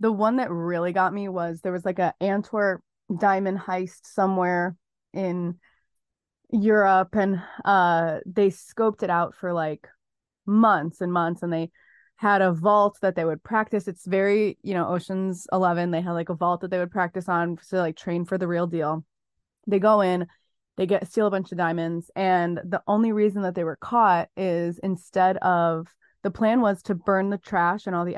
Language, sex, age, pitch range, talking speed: English, female, 20-39, 175-200 Hz, 195 wpm